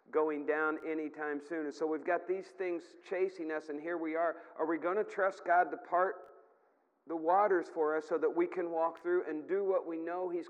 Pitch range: 145-190 Hz